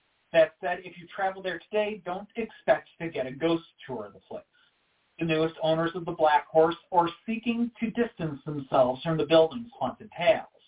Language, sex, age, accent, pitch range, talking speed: English, male, 40-59, American, 155-220 Hz, 190 wpm